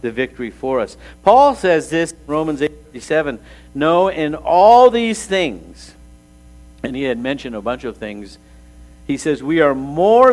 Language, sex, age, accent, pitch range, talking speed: English, male, 50-69, American, 115-180 Hz, 165 wpm